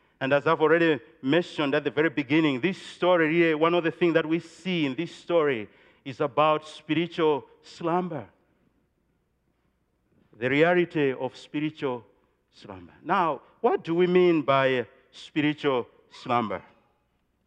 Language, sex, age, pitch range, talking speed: English, male, 50-69, 140-170 Hz, 135 wpm